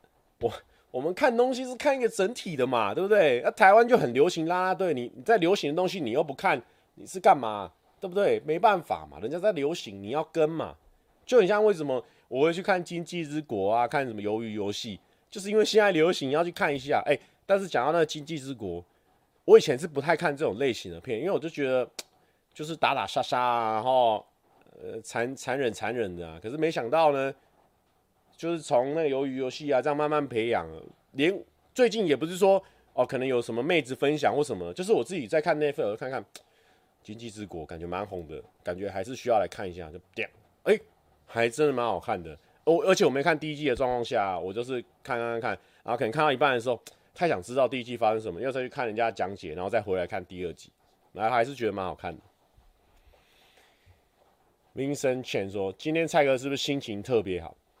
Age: 30-49